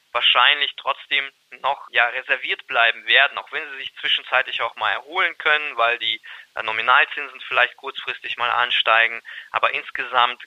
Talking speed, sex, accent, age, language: 145 wpm, male, German, 20-39, German